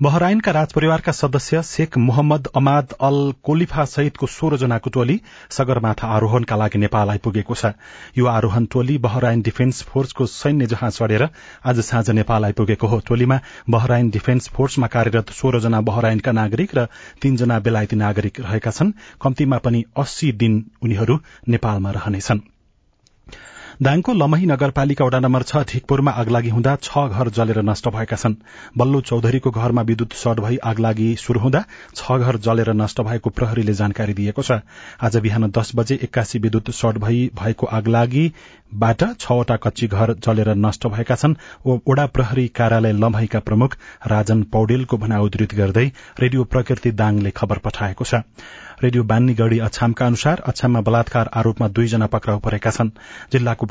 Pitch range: 110-130 Hz